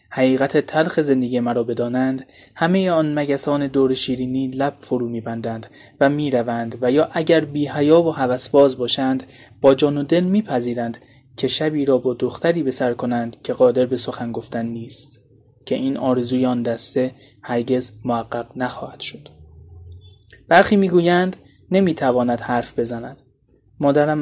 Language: Persian